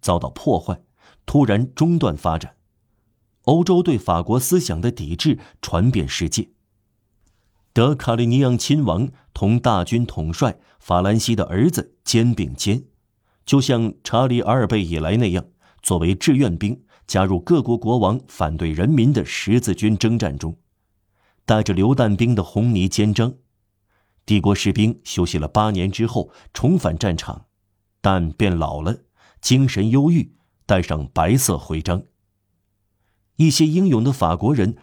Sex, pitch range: male, 95-120 Hz